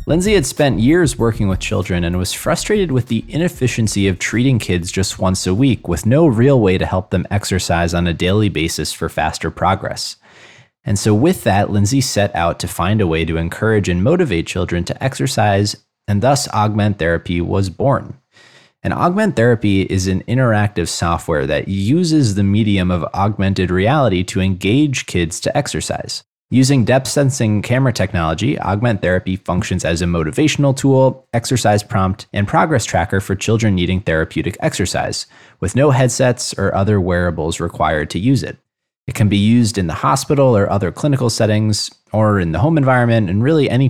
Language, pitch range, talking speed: English, 90-125 Hz, 175 wpm